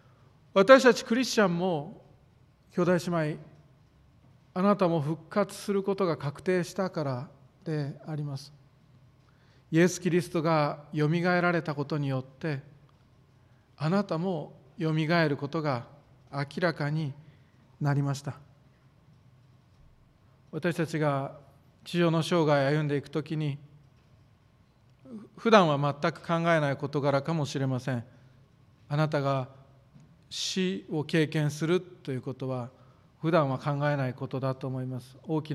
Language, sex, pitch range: Japanese, male, 135-160 Hz